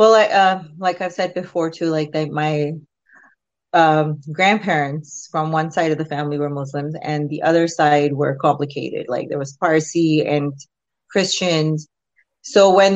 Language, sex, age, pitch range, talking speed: English, female, 30-49, 150-180 Hz, 160 wpm